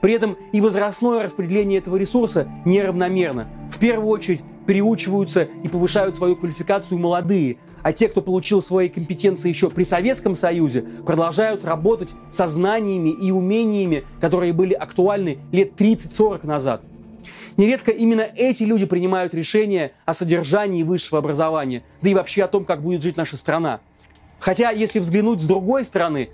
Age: 30-49